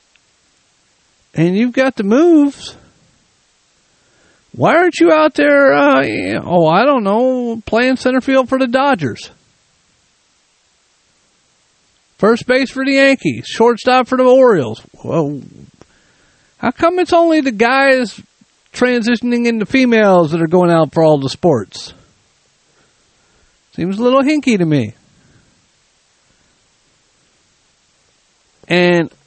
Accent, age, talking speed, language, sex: American, 50-69, 115 wpm, English, male